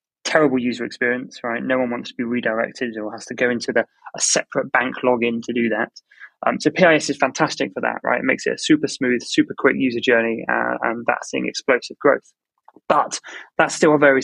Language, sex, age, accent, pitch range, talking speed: English, male, 20-39, British, 110-130 Hz, 220 wpm